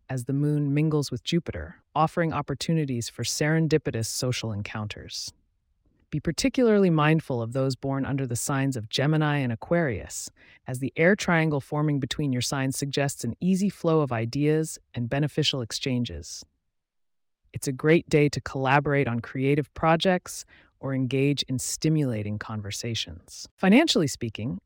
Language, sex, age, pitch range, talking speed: English, female, 30-49, 115-155 Hz, 140 wpm